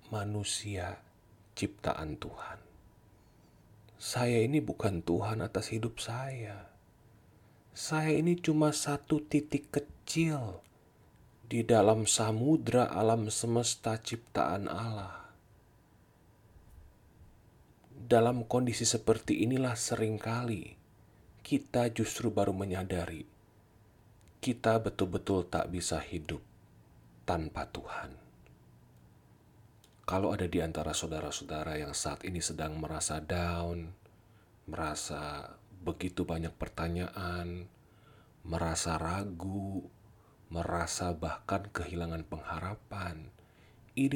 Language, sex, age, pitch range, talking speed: Indonesian, male, 30-49, 90-115 Hz, 80 wpm